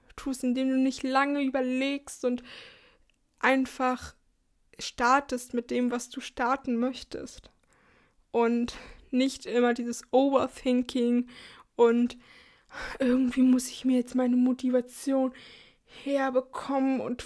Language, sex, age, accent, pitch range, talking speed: German, female, 20-39, German, 245-275 Hz, 105 wpm